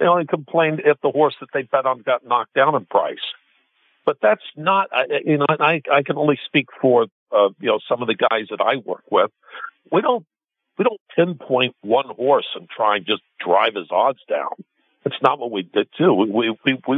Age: 50-69